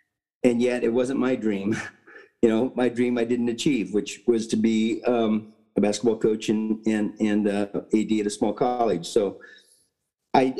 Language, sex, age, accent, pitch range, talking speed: English, male, 50-69, American, 110-125 Hz, 180 wpm